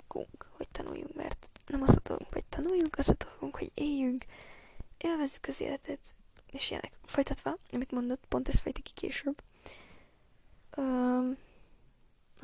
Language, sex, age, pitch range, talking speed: Hungarian, female, 10-29, 255-315 Hz, 135 wpm